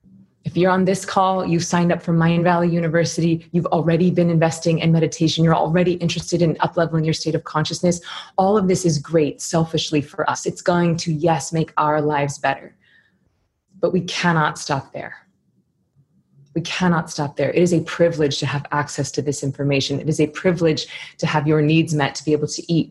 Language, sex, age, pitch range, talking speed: English, female, 20-39, 145-170 Hz, 200 wpm